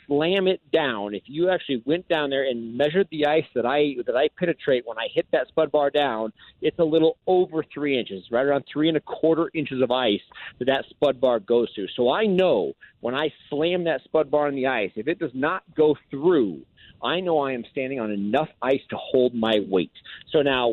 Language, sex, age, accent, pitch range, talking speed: English, male, 40-59, American, 130-165 Hz, 225 wpm